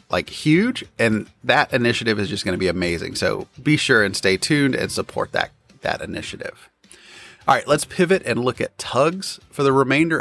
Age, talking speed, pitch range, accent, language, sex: 30-49, 195 wpm, 110-180 Hz, American, English, male